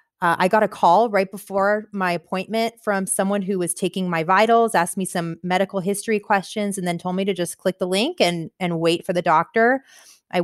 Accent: American